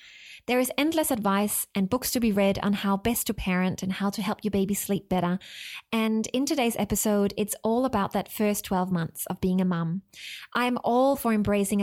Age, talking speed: 20-39, 210 wpm